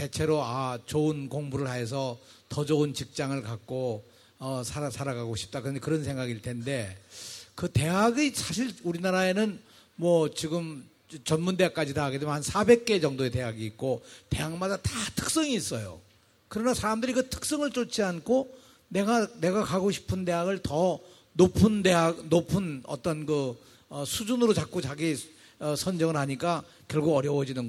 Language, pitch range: Korean, 135-215 Hz